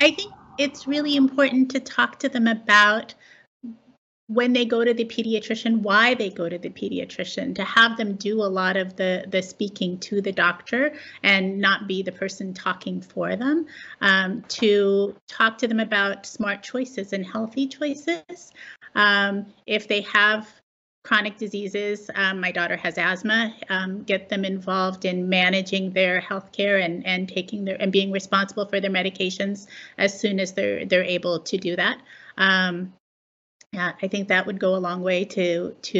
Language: English